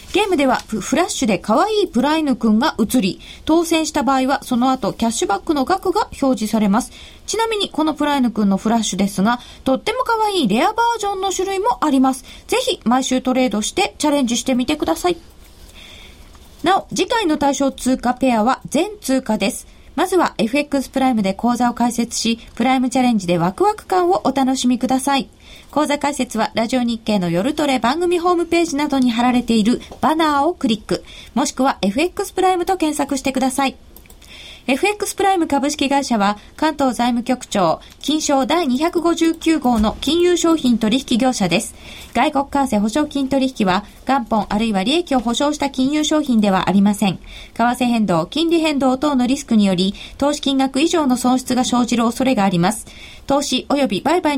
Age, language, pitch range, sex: 20-39, Japanese, 235-305 Hz, female